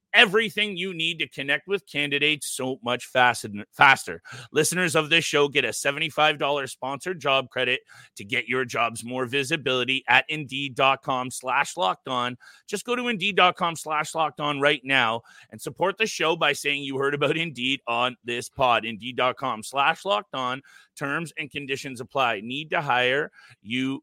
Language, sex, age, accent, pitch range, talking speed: English, male, 30-49, American, 130-170 Hz, 165 wpm